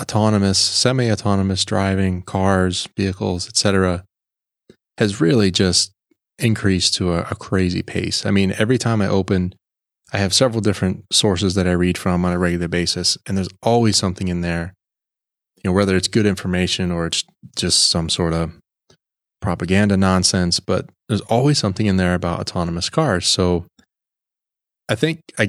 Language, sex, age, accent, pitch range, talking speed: English, male, 20-39, American, 90-105 Hz, 160 wpm